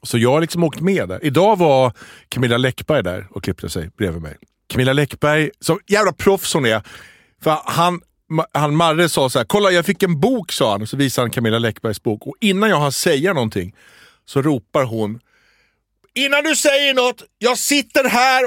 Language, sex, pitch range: English, male, 115-170 Hz